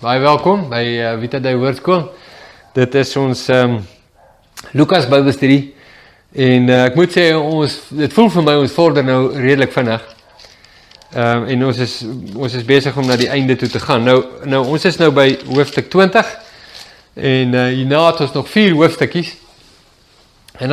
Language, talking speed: English, 165 wpm